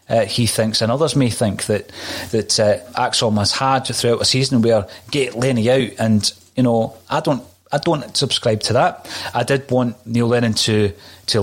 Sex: male